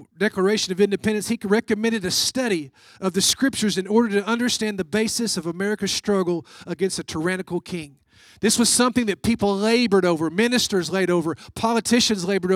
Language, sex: English, male